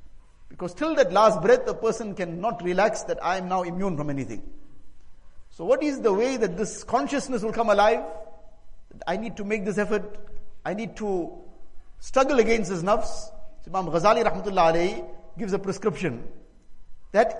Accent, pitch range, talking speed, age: Indian, 180-230 Hz, 170 wpm, 50-69